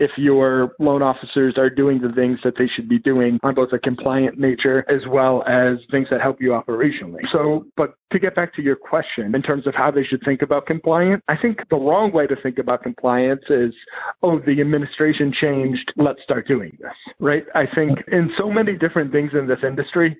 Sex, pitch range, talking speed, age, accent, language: male, 130-150 Hz, 215 wpm, 40-59, American, English